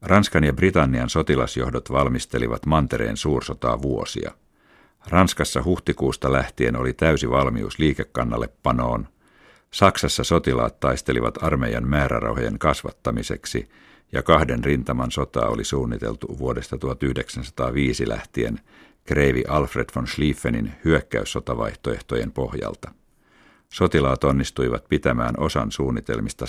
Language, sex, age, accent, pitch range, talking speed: Finnish, male, 60-79, native, 65-75 Hz, 95 wpm